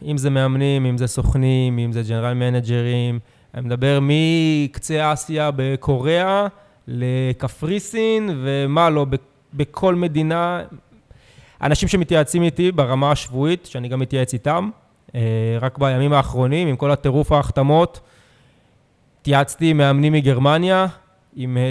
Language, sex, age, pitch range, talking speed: Hebrew, male, 20-39, 130-175 Hz, 110 wpm